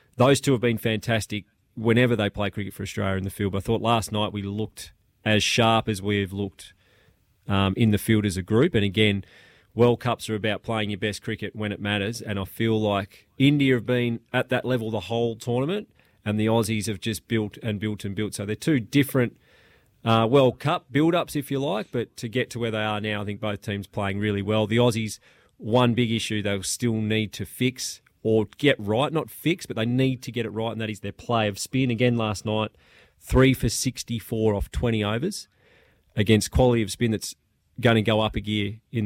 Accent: Australian